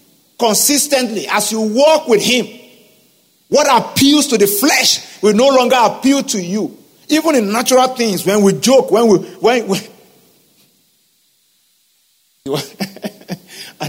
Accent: Nigerian